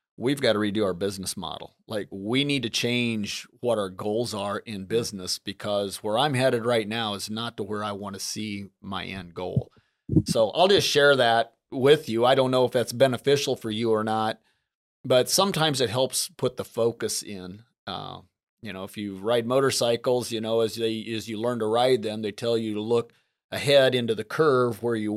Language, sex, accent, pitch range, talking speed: English, male, American, 105-125 Hz, 205 wpm